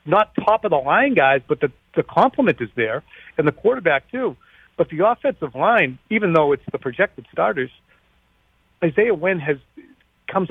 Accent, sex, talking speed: American, male, 155 wpm